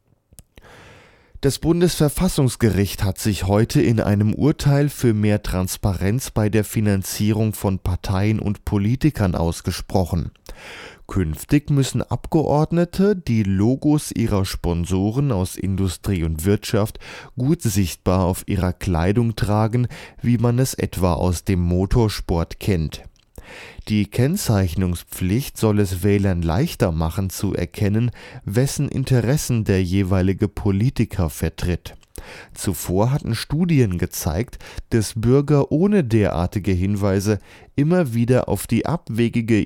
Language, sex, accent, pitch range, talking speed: German, male, German, 95-120 Hz, 110 wpm